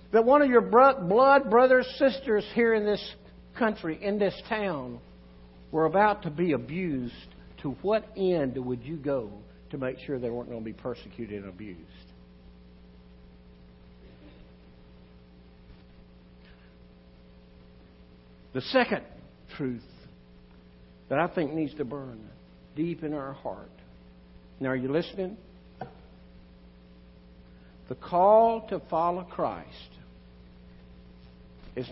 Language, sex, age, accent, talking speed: English, male, 60-79, American, 110 wpm